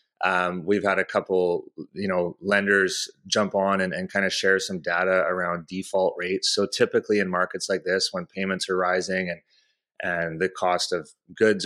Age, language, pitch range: 30-49, English, 95-105 Hz